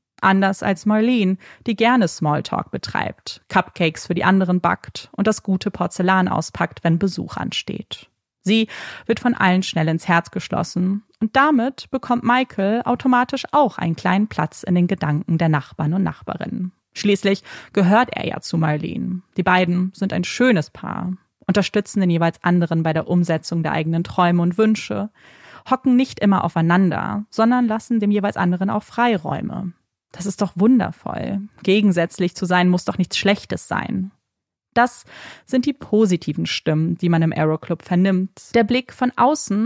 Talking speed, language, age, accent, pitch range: 160 wpm, German, 30-49, German, 170-220 Hz